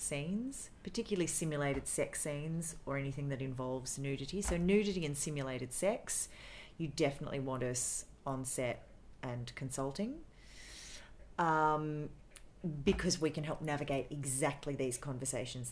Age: 40-59